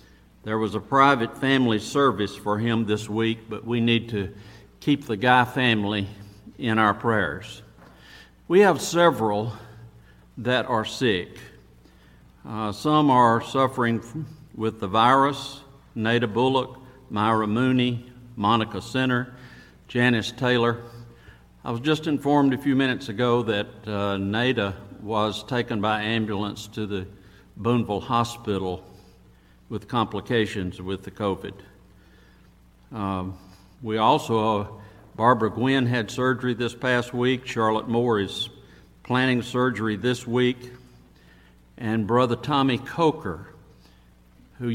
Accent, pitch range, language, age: American, 100-125 Hz, English, 60-79